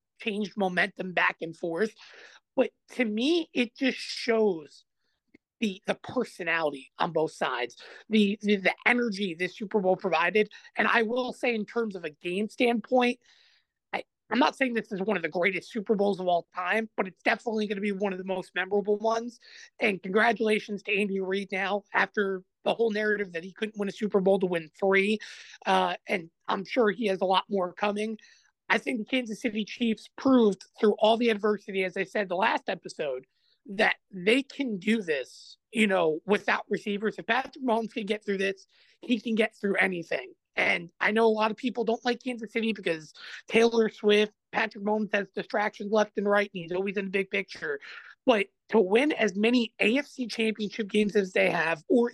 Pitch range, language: 195-230 Hz, English